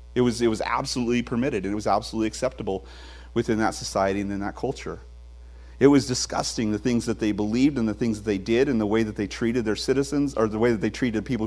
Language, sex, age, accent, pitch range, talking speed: English, male, 40-59, American, 95-135 Hz, 245 wpm